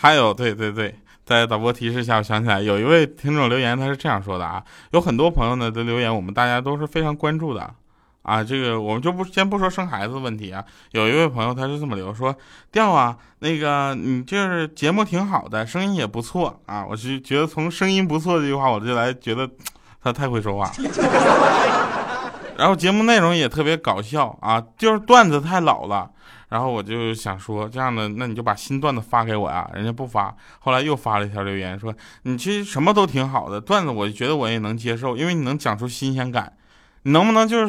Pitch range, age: 110-160 Hz, 20-39